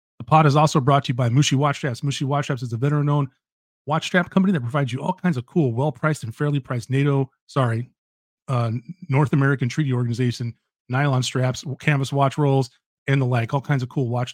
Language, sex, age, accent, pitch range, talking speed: English, male, 30-49, American, 125-150 Hz, 215 wpm